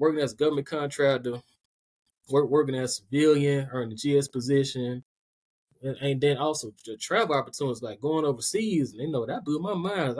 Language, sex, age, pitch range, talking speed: English, male, 20-39, 130-160 Hz, 175 wpm